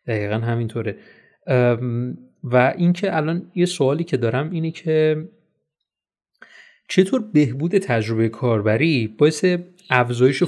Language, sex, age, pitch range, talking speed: Persian, male, 30-49, 115-145 Hz, 105 wpm